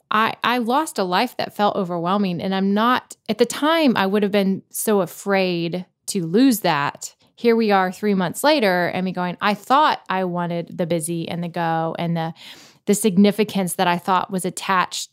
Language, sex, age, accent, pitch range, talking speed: English, female, 20-39, American, 180-215 Hz, 200 wpm